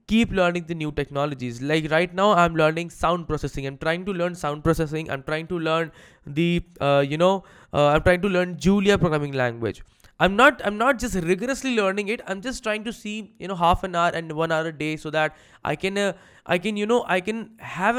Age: 20-39